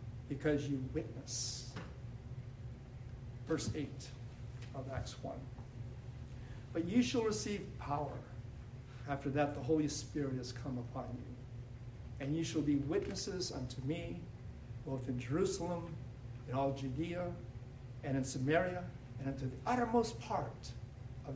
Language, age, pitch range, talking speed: English, 60-79, 120-145 Hz, 125 wpm